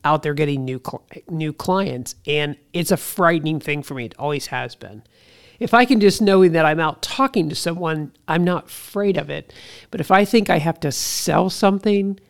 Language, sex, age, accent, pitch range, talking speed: English, male, 50-69, American, 145-185 Hz, 210 wpm